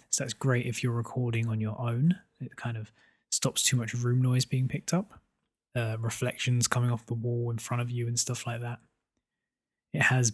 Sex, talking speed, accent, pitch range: male, 210 wpm, British, 115-140 Hz